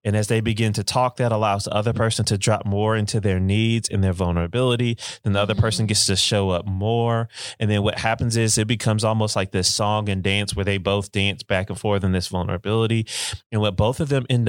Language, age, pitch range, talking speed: English, 30-49, 95-110 Hz, 240 wpm